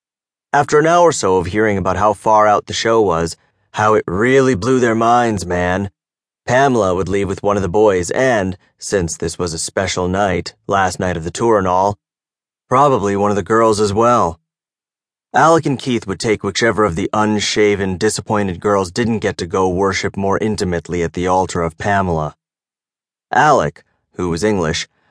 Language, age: English, 30-49